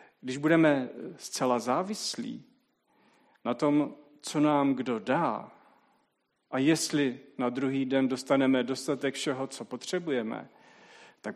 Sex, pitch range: male, 125-160 Hz